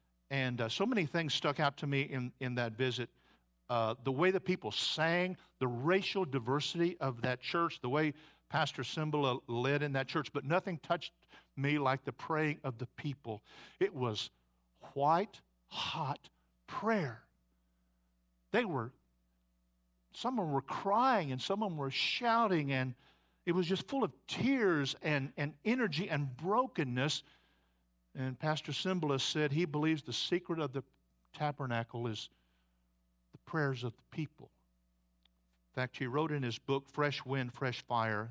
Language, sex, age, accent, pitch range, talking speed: English, male, 50-69, American, 115-170 Hz, 160 wpm